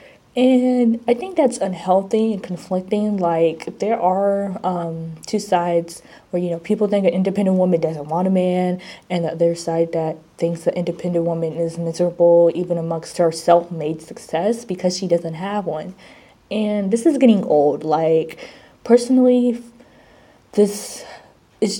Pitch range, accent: 170-205 Hz, American